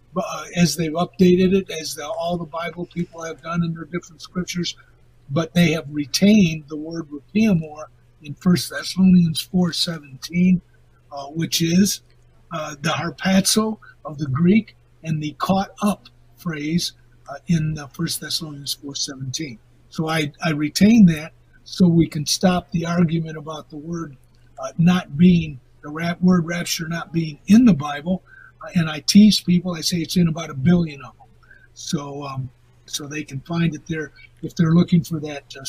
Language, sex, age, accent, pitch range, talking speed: English, male, 50-69, American, 145-175 Hz, 170 wpm